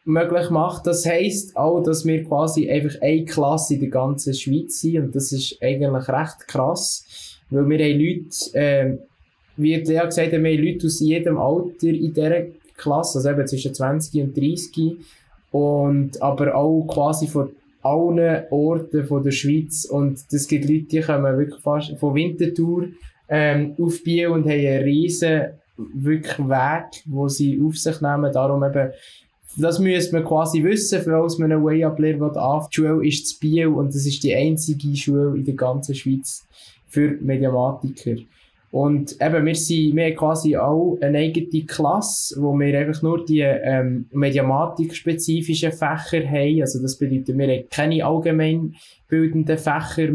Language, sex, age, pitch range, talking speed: German, male, 20-39, 140-160 Hz, 160 wpm